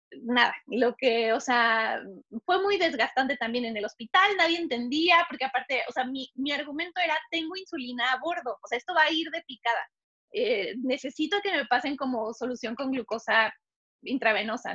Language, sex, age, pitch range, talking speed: Spanish, female, 20-39, 245-330 Hz, 180 wpm